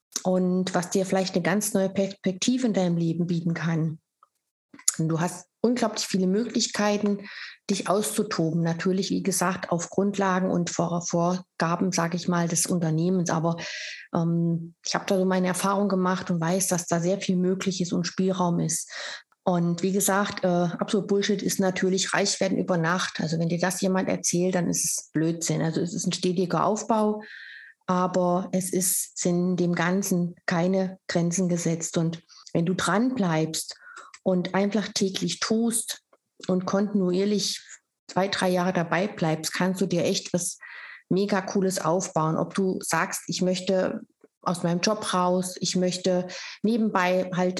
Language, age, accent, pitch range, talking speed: German, 30-49, German, 175-195 Hz, 160 wpm